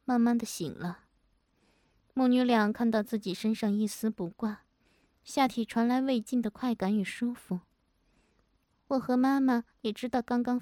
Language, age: Chinese, 20-39